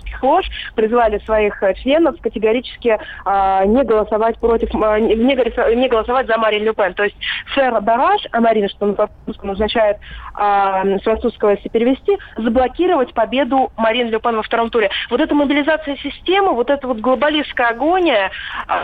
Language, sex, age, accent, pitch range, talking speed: Russian, female, 20-39, native, 215-260 Hz, 145 wpm